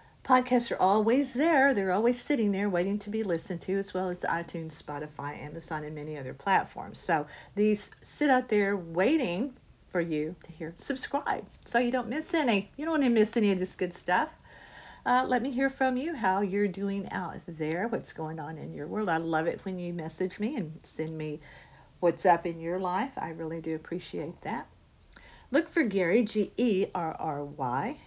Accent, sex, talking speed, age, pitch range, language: American, female, 190 wpm, 50-69, 160-230 Hz, English